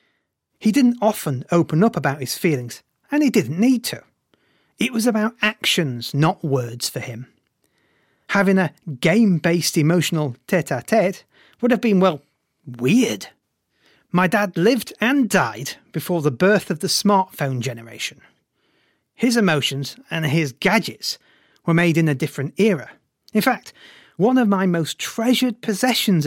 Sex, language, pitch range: male, English, 150-215 Hz